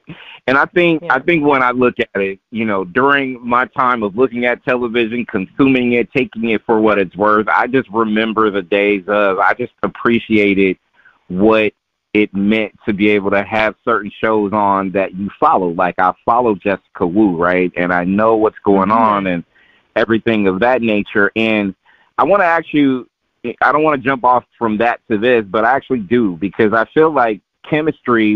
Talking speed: 195 wpm